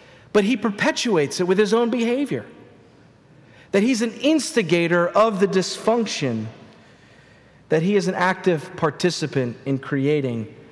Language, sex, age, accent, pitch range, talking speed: English, male, 40-59, American, 150-195 Hz, 130 wpm